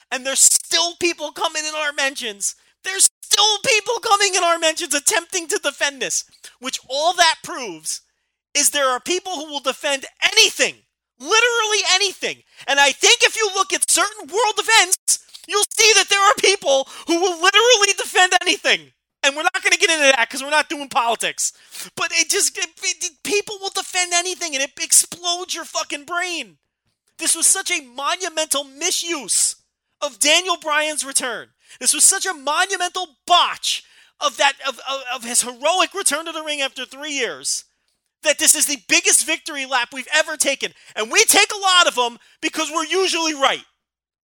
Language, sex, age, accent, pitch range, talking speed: English, male, 30-49, American, 280-370 Hz, 180 wpm